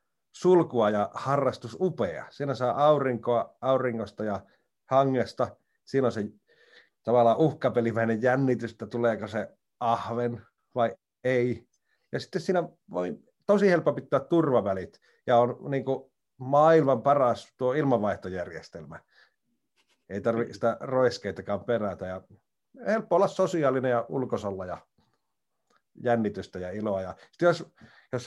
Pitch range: 105-140 Hz